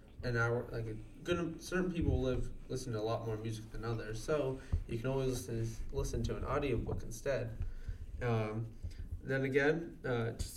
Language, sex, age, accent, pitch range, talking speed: English, male, 20-39, American, 110-130 Hz, 170 wpm